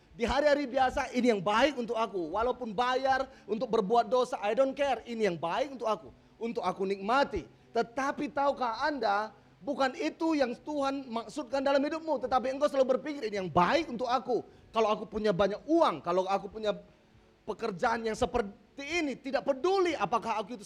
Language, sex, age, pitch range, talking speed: English, male, 30-49, 230-295 Hz, 175 wpm